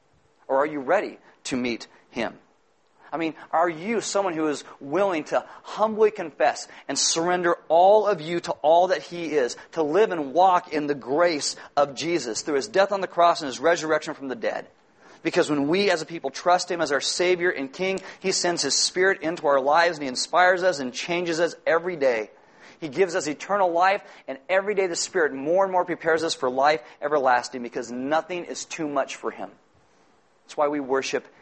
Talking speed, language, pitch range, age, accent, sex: 205 wpm, English, 145-180 Hz, 40-59, American, male